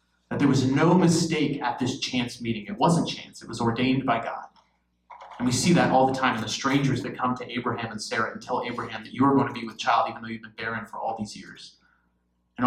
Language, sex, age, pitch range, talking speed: English, male, 30-49, 115-170 Hz, 250 wpm